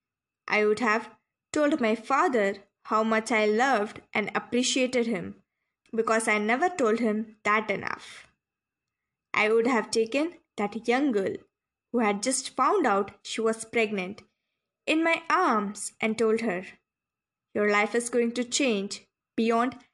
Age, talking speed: 20-39, 145 wpm